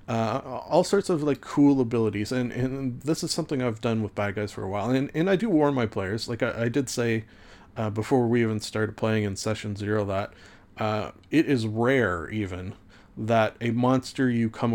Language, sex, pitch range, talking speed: English, male, 105-130 Hz, 210 wpm